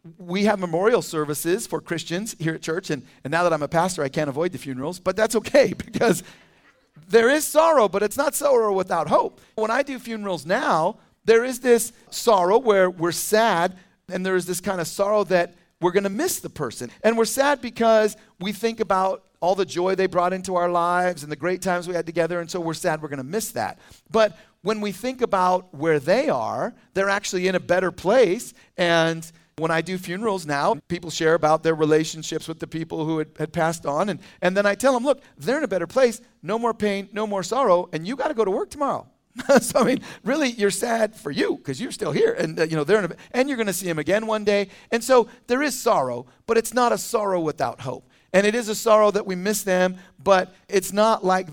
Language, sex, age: English, male, 40-59